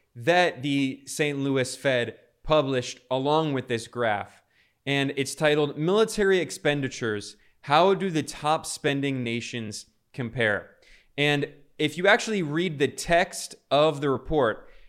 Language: English